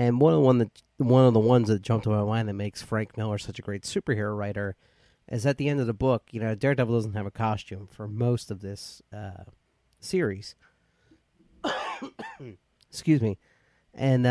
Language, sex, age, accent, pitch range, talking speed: English, male, 40-59, American, 105-125 Hz, 190 wpm